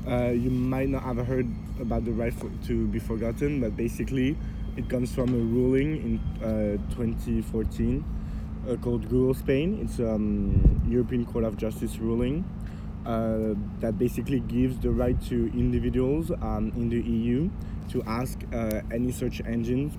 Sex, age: male, 20-39